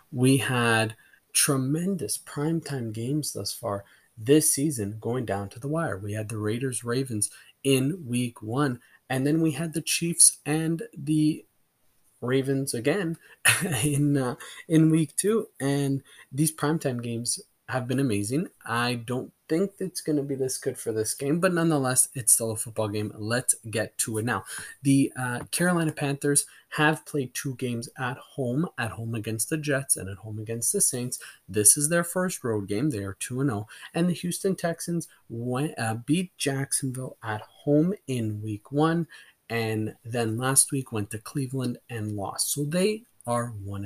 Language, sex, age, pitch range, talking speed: English, male, 20-39, 115-155 Hz, 170 wpm